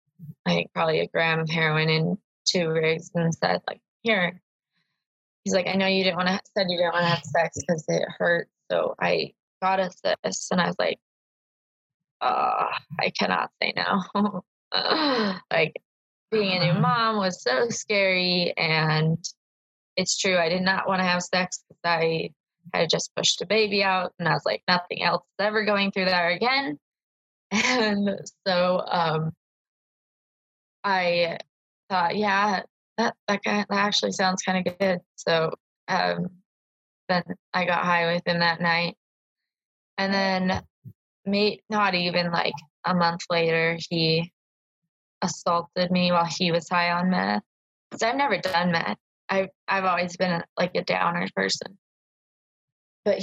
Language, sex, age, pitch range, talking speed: English, female, 20-39, 170-195 Hz, 160 wpm